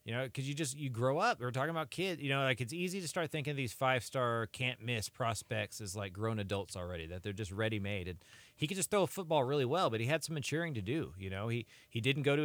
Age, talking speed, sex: 30-49, 275 wpm, male